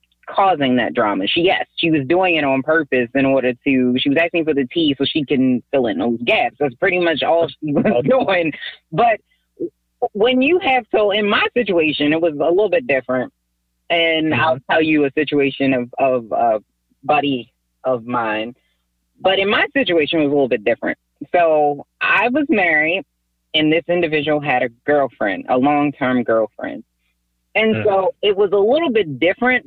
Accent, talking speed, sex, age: American, 185 wpm, female, 30-49